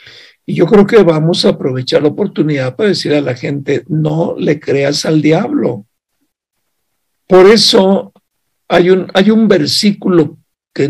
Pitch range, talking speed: 145-190 Hz, 145 wpm